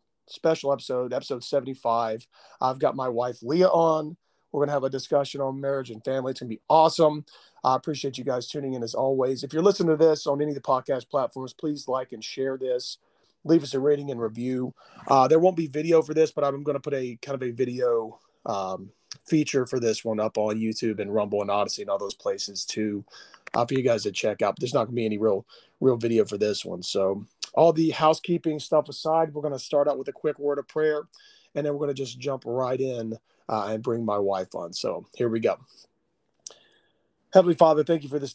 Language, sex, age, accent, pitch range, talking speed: English, male, 30-49, American, 115-150 Hz, 230 wpm